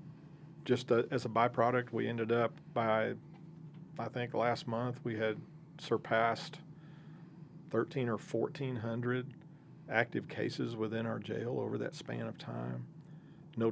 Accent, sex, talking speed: American, male, 125 wpm